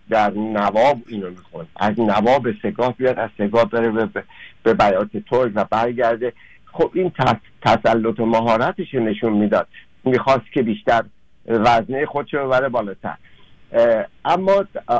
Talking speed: 130 wpm